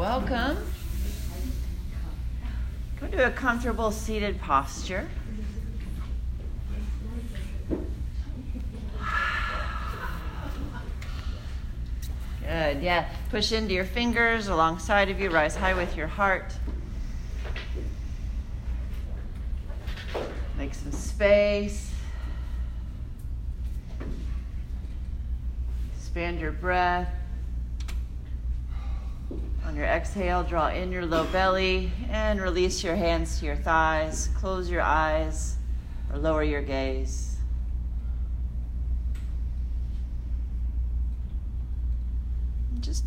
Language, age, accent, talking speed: English, 40-59, American, 70 wpm